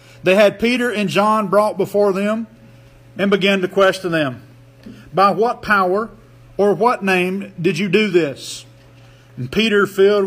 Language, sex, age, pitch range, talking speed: English, male, 40-59, 135-205 Hz, 150 wpm